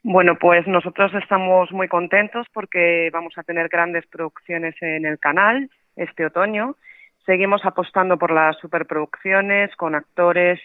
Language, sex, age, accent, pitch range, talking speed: Spanish, female, 30-49, Spanish, 165-210 Hz, 135 wpm